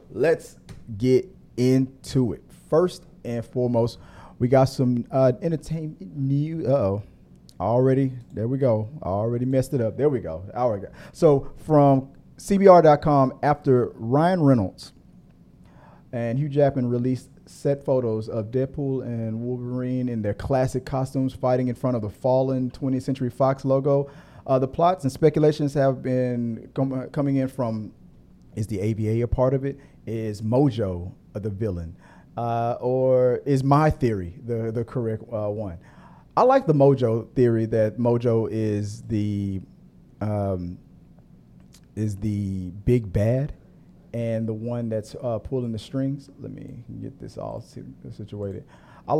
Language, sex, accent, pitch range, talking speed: English, male, American, 110-135 Hz, 145 wpm